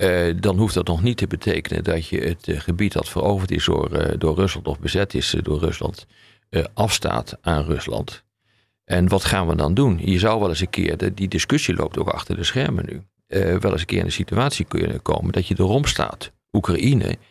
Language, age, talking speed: Dutch, 50-69, 220 wpm